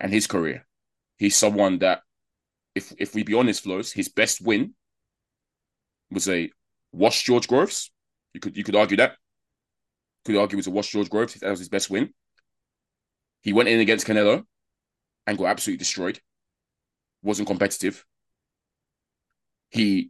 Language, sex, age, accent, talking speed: English, male, 20-39, British, 155 wpm